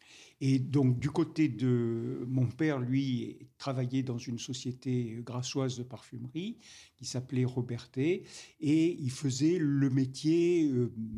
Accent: French